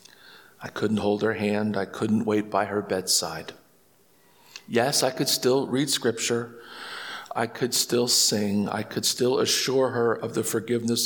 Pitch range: 105-120 Hz